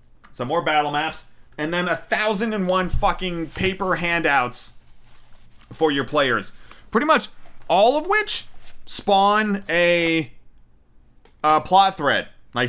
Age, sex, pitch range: 30-49, male, 130-170 Hz